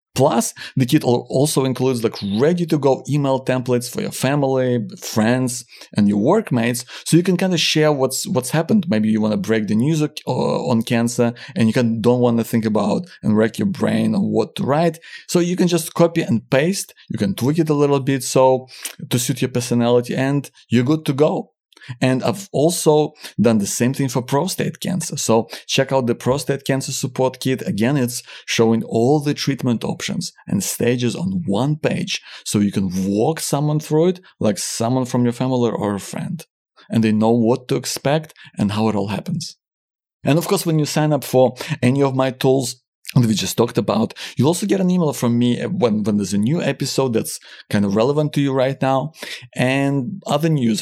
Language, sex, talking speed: English, male, 205 wpm